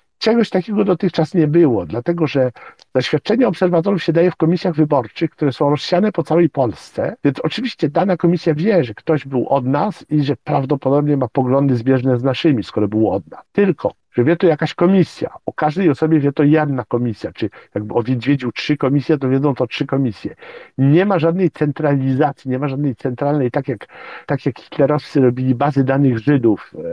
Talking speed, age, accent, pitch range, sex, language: 185 wpm, 50-69, native, 130-160 Hz, male, Polish